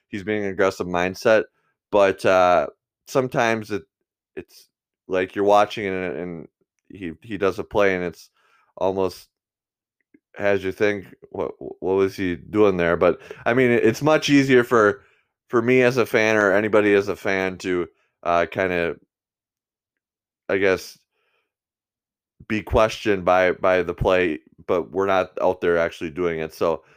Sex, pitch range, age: male, 85-100 Hz, 20-39